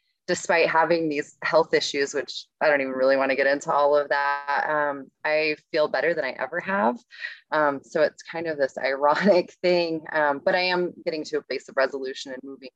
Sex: female